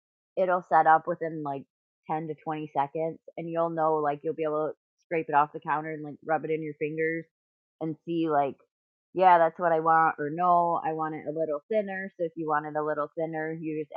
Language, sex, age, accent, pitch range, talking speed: English, female, 20-39, American, 150-175 Hz, 235 wpm